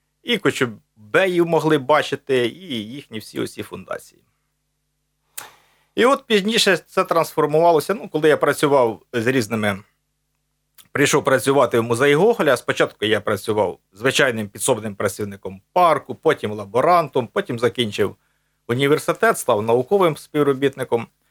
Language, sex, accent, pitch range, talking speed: Ukrainian, male, native, 115-155 Hz, 115 wpm